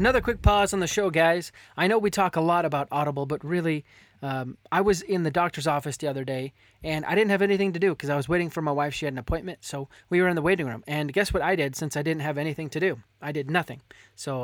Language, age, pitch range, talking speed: English, 20-39, 135-185 Hz, 285 wpm